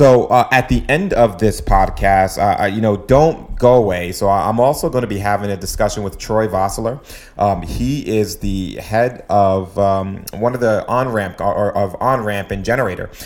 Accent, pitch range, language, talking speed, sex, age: American, 100-115 Hz, English, 190 wpm, male, 30-49